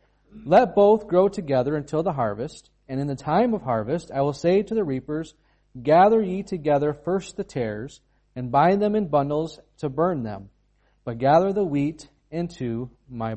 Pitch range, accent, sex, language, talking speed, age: 115-150 Hz, American, male, English, 175 wpm, 40-59